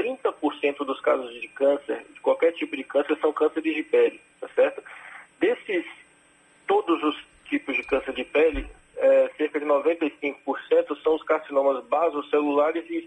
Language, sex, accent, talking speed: Portuguese, male, Brazilian, 145 wpm